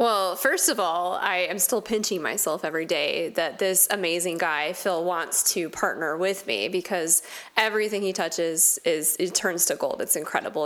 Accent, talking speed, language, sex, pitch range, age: American, 180 wpm, English, female, 180-220 Hz, 20-39